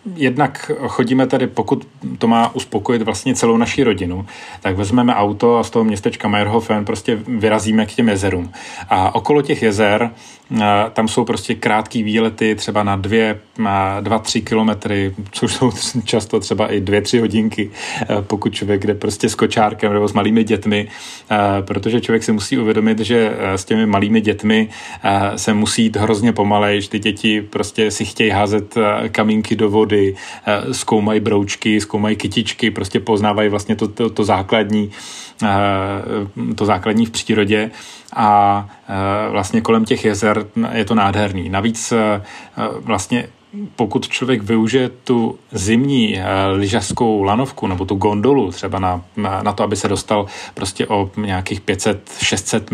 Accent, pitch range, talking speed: native, 105-115 Hz, 145 wpm